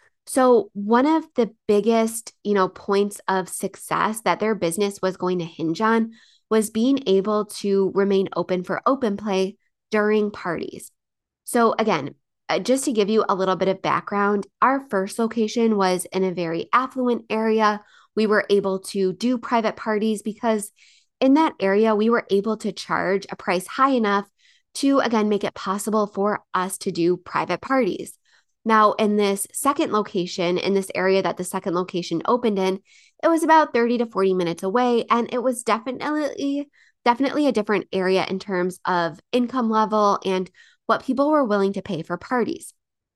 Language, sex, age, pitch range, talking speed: English, female, 20-39, 190-240 Hz, 170 wpm